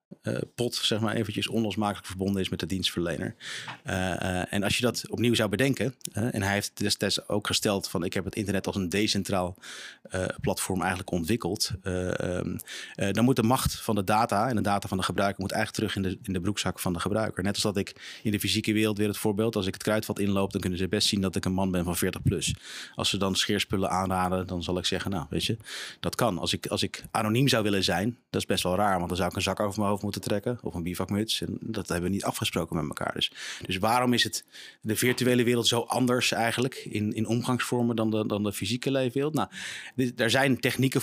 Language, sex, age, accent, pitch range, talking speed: Dutch, male, 30-49, Dutch, 95-115 Hz, 240 wpm